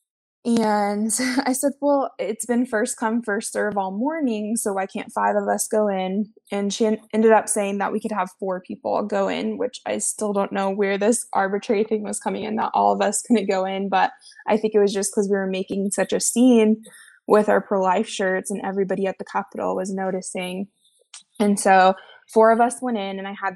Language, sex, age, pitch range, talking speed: English, female, 20-39, 195-230 Hz, 220 wpm